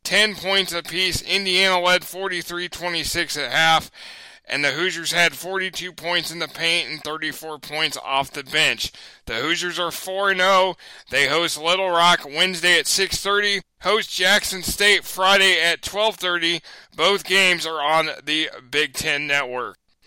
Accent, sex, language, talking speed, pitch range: American, male, English, 145 wpm, 165-185 Hz